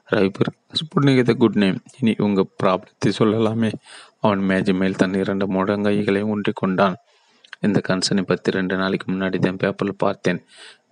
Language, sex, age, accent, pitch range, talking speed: Tamil, male, 30-49, native, 95-100 Hz, 125 wpm